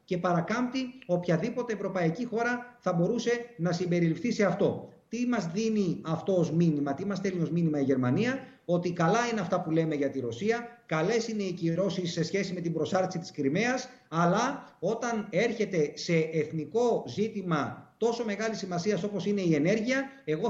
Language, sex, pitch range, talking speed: Greek, male, 170-235 Hz, 170 wpm